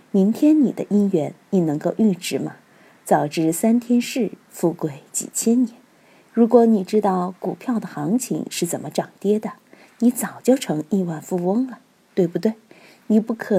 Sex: female